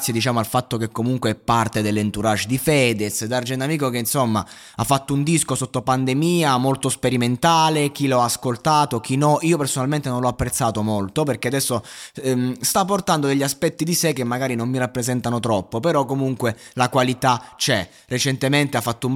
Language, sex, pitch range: Italian, male, 115-145 Hz